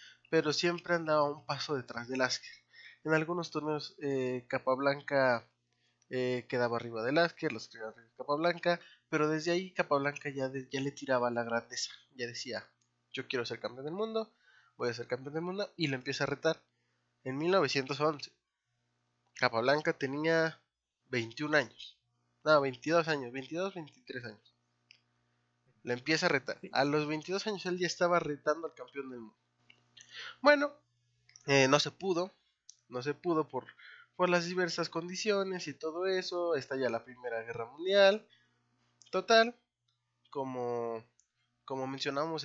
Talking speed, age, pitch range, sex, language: 150 wpm, 20-39, 120-160 Hz, male, Spanish